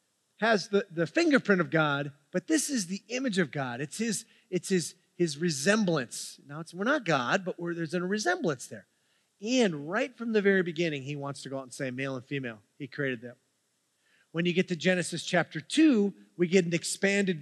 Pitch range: 150-190 Hz